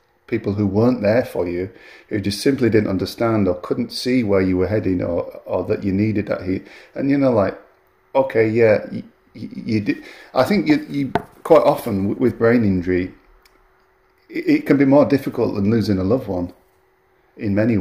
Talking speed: 190 wpm